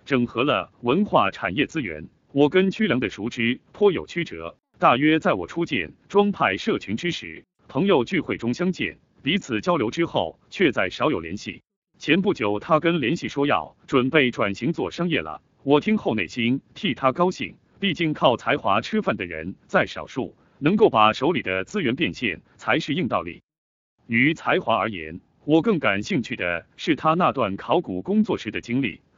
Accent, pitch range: native, 110-185 Hz